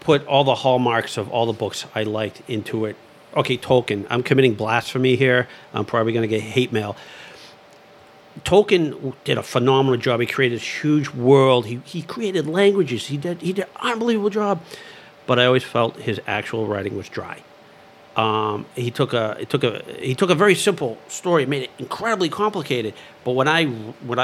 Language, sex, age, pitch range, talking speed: English, male, 50-69, 115-145 Hz, 190 wpm